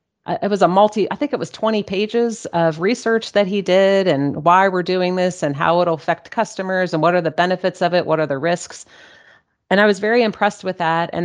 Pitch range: 160-200 Hz